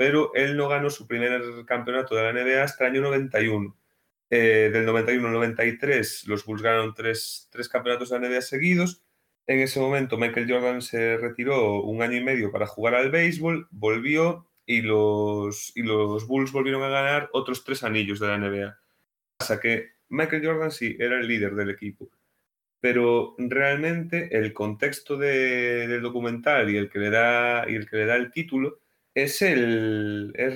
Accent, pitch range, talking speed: Spanish, 115-140 Hz, 185 wpm